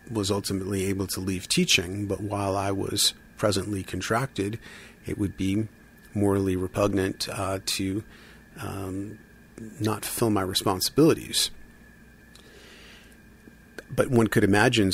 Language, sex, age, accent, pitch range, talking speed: English, male, 40-59, American, 95-110 Hz, 115 wpm